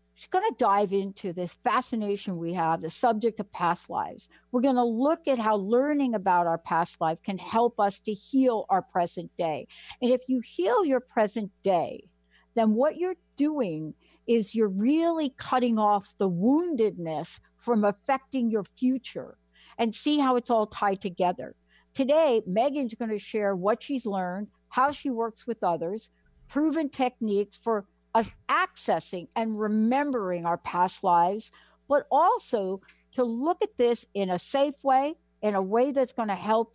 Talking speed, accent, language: 165 wpm, American, English